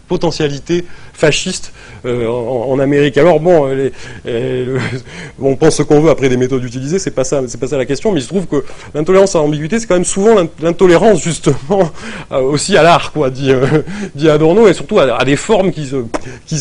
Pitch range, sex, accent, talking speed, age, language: 130-175 Hz, male, French, 215 wpm, 30-49, French